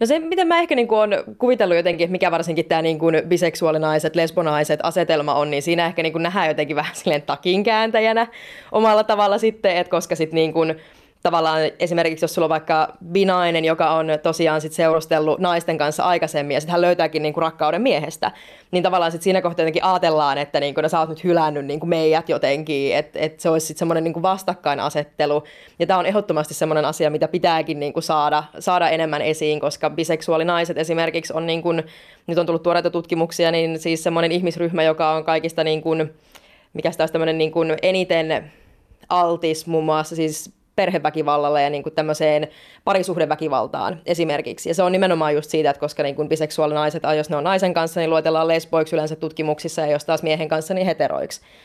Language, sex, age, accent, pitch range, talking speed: Finnish, female, 20-39, native, 155-175 Hz, 180 wpm